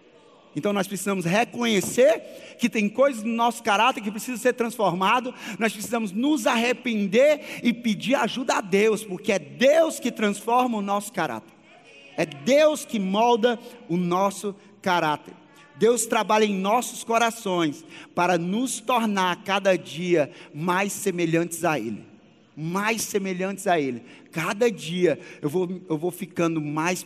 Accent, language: Brazilian, Portuguese